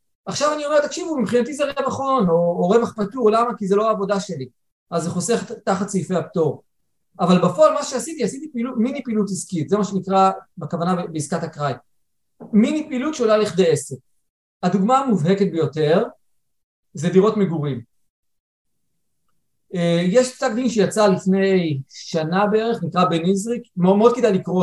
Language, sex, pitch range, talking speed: Hebrew, male, 170-220 Hz, 150 wpm